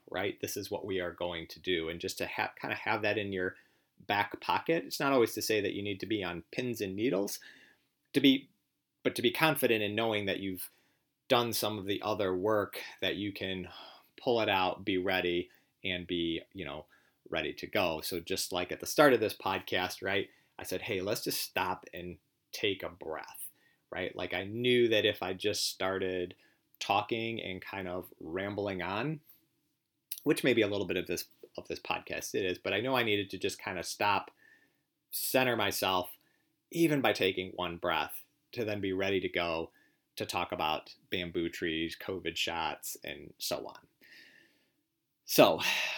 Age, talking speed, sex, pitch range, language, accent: 30-49, 190 wpm, male, 95-120 Hz, English, American